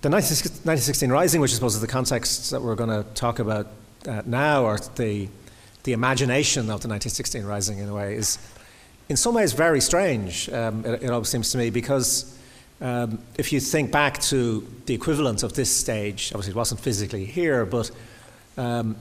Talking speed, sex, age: 195 wpm, male, 40-59